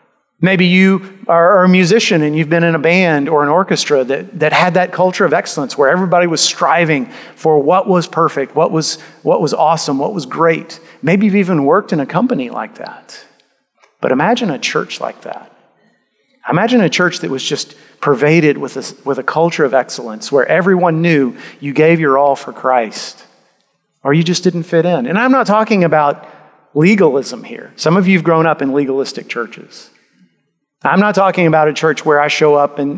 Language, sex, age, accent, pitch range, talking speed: English, male, 40-59, American, 145-175 Hz, 195 wpm